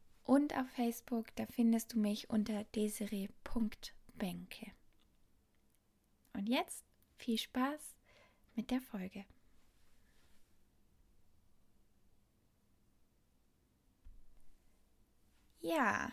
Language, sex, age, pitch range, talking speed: German, female, 20-39, 220-255 Hz, 65 wpm